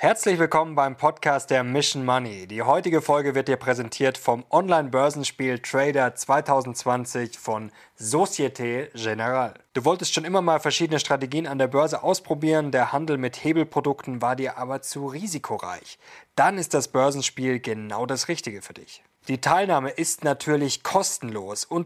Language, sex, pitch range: German, male, 125-155 Hz